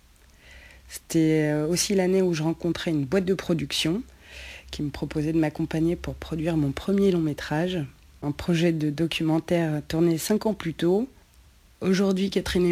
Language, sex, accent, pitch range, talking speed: French, female, French, 150-185 Hz, 150 wpm